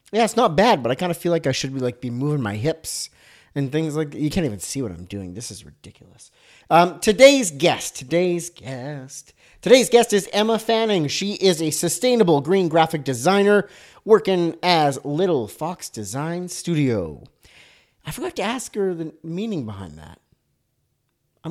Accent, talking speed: American, 180 wpm